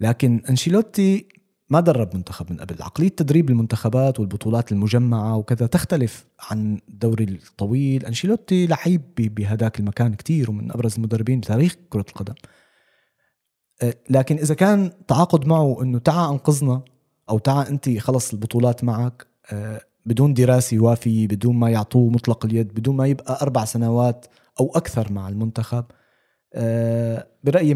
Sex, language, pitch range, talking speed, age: male, Arabic, 110-135 Hz, 130 wpm, 20-39